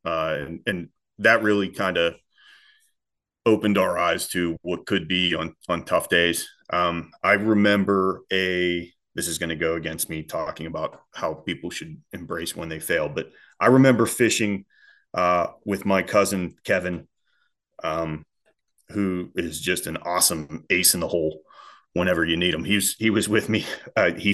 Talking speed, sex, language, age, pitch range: 170 wpm, male, English, 30-49, 85-105 Hz